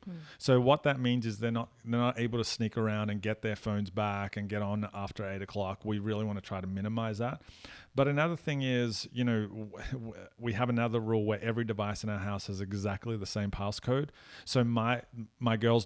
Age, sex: 40-59, male